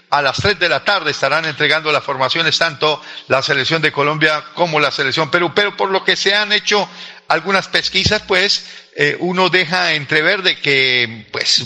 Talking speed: 185 wpm